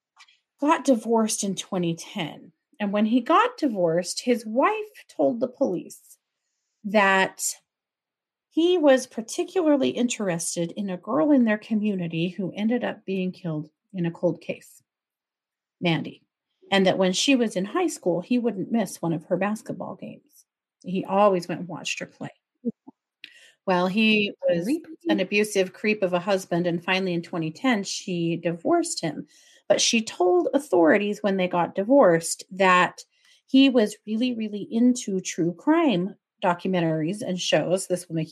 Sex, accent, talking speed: female, American, 150 wpm